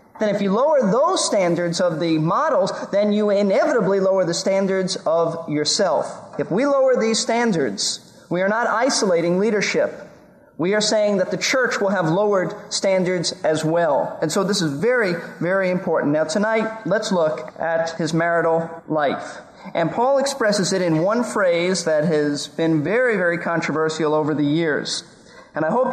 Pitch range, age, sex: 165-215 Hz, 40-59, male